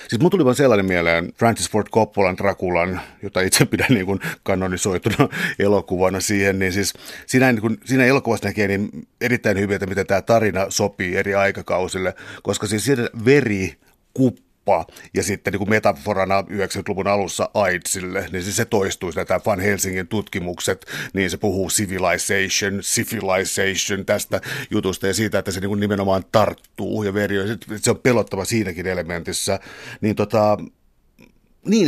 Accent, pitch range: native, 95-115 Hz